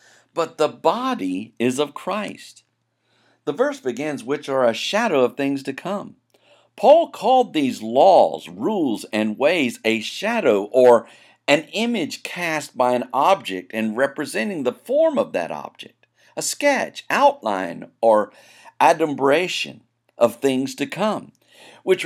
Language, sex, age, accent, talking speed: English, male, 50-69, American, 135 wpm